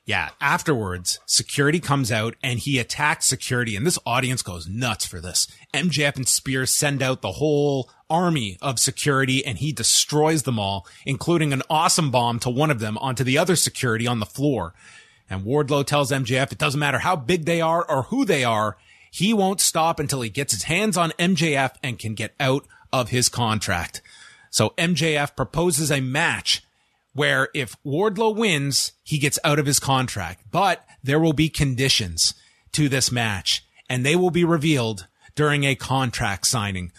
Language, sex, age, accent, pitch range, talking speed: English, male, 30-49, American, 115-150 Hz, 180 wpm